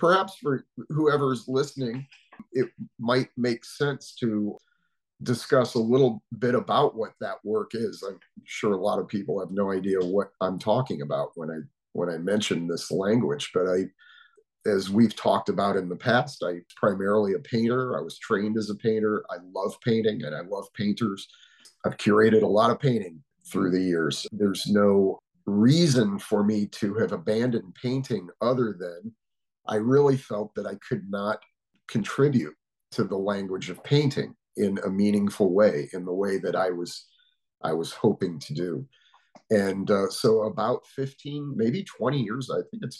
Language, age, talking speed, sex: English, 40-59, 170 wpm, male